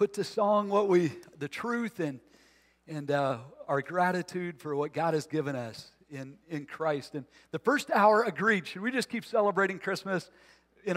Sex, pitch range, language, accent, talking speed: male, 155-195 Hz, English, American, 180 wpm